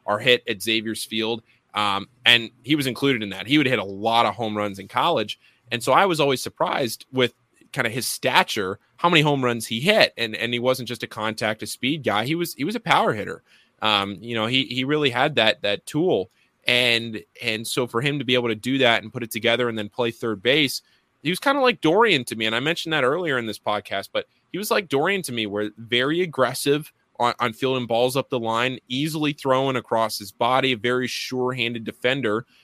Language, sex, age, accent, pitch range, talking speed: English, male, 20-39, American, 110-130 Hz, 235 wpm